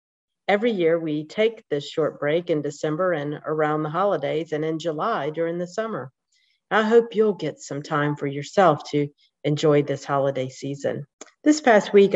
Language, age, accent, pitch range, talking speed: English, 50-69, American, 155-215 Hz, 175 wpm